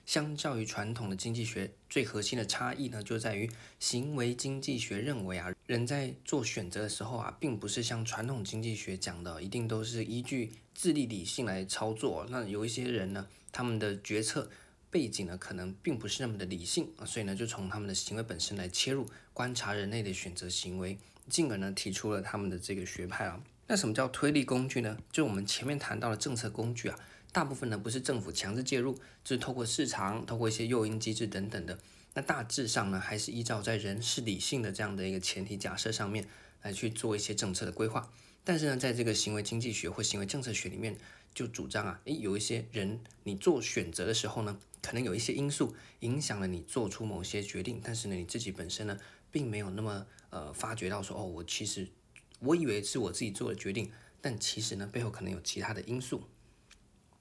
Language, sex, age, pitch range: Chinese, male, 20-39, 100-120 Hz